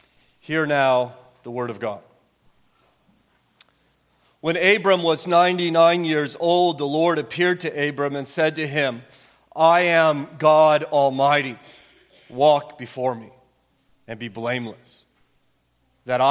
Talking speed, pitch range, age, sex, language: 120 wpm, 125-155 Hz, 40-59, male, English